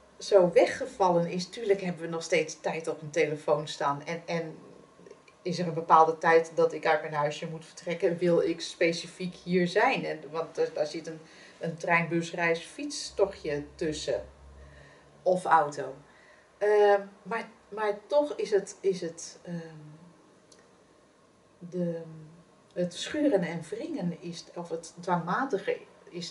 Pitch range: 160-200 Hz